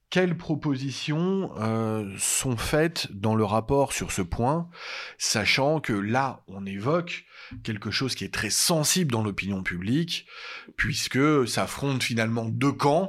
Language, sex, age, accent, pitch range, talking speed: French, male, 30-49, French, 105-140 Hz, 140 wpm